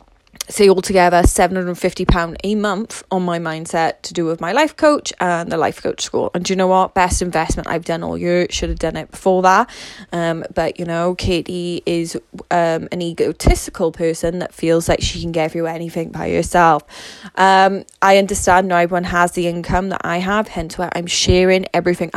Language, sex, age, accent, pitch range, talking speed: English, female, 20-39, British, 170-195 Hz, 195 wpm